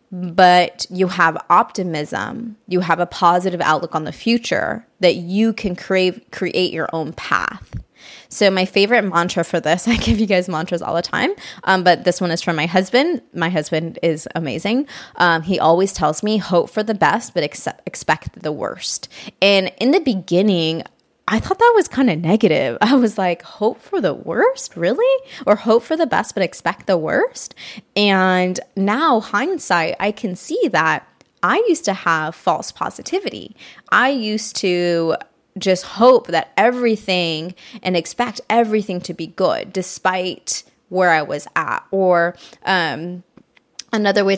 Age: 20-39